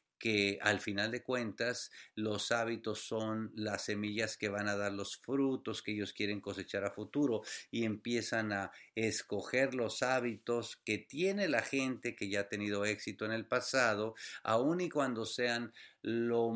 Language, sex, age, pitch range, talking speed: English, male, 50-69, 105-125 Hz, 165 wpm